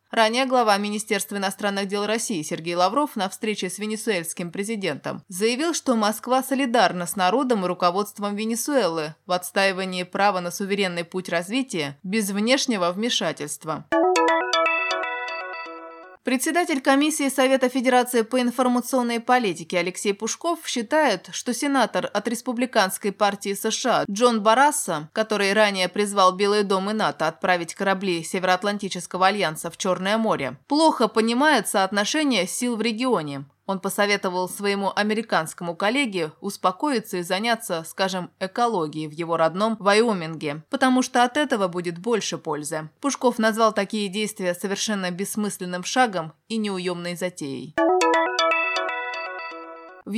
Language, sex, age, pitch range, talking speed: Russian, female, 20-39, 180-235 Hz, 120 wpm